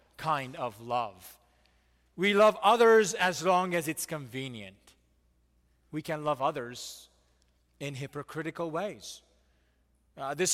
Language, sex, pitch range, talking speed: English, male, 115-190 Hz, 115 wpm